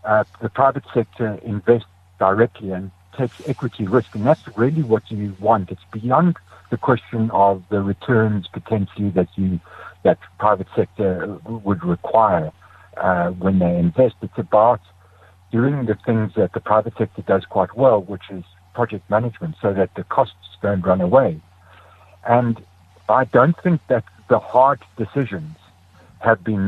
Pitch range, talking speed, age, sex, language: 95-115 Hz, 155 wpm, 60-79, male, English